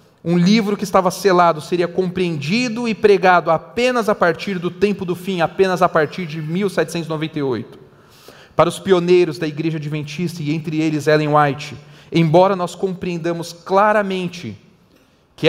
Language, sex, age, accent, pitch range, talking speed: Portuguese, male, 40-59, Brazilian, 130-180 Hz, 145 wpm